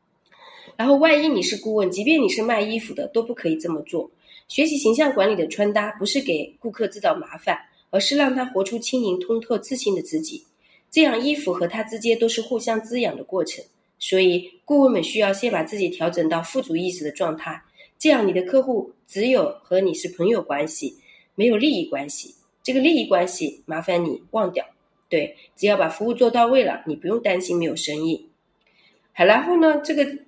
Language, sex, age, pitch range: Chinese, female, 30-49, 175-260 Hz